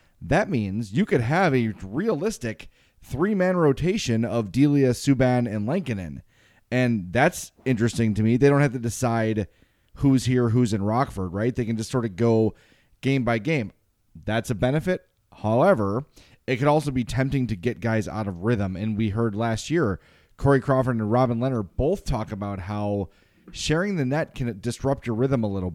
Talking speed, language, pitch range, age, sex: 180 wpm, English, 110-135 Hz, 30-49, male